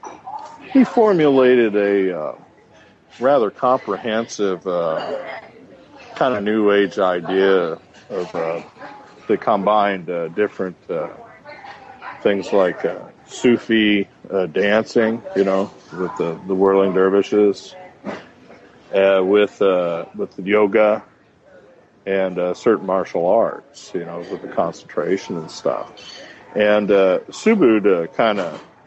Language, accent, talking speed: English, American, 115 wpm